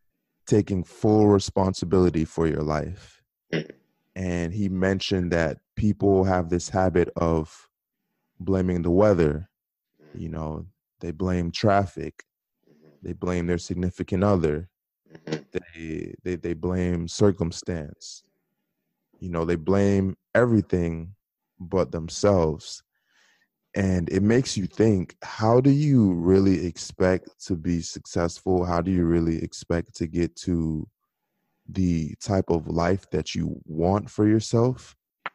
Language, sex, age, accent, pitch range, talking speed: English, male, 20-39, American, 85-100 Hz, 120 wpm